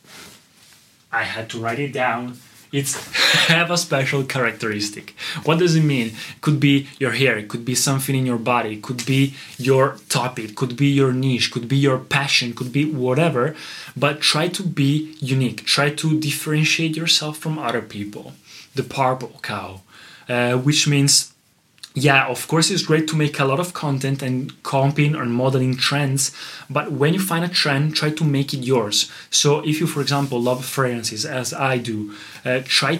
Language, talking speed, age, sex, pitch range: Italian, 185 wpm, 20-39, male, 125-150 Hz